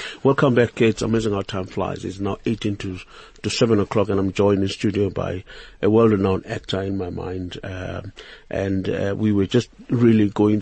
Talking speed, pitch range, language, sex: 200 wpm, 100-115 Hz, English, male